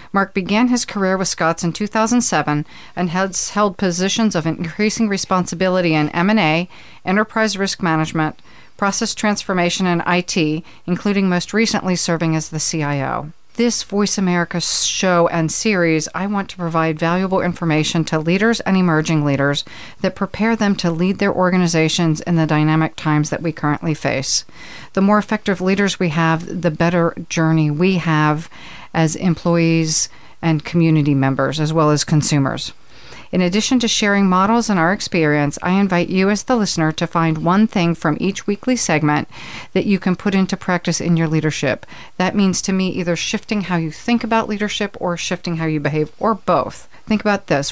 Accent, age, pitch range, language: American, 40-59, 160-195 Hz, English